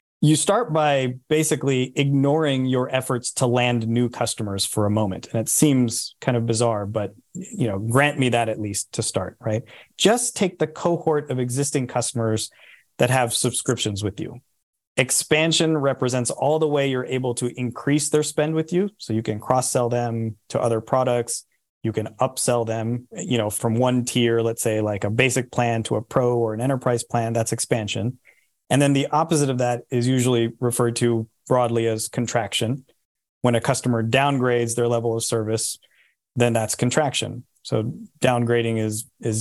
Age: 30-49